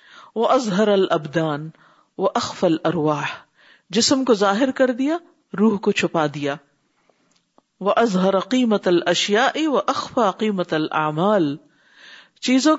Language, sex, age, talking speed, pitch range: Urdu, female, 50-69, 100 wpm, 180-250 Hz